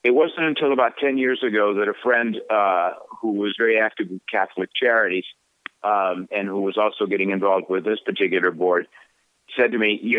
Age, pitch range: 50-69, 95-115 Hz